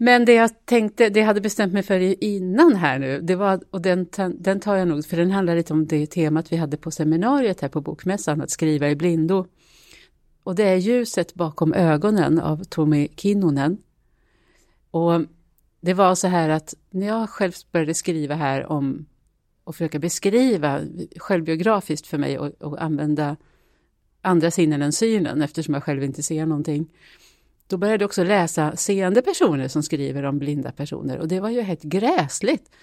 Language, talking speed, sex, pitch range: Swedish, 180 wpm, female, 155-195 Hz